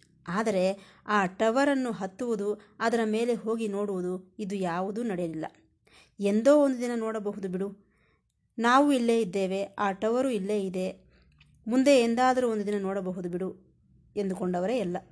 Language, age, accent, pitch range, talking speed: Kannada, 20-39, native, 190-240 Hz, 125 wpm